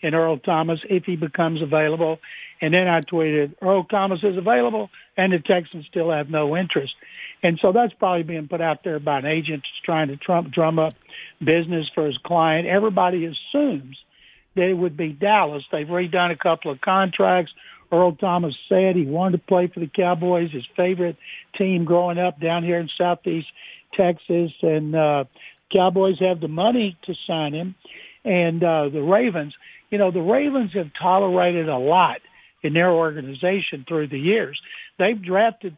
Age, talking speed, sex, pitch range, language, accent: 60-79, 175 wpm, male, 160-190 Hz, English, American